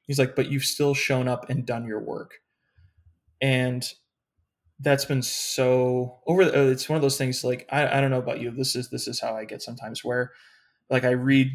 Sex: male